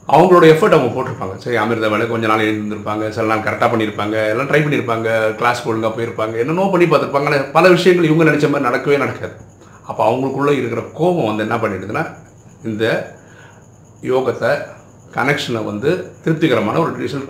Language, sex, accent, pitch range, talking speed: Tamil, male, native, 110-145 Hz, 155 wpm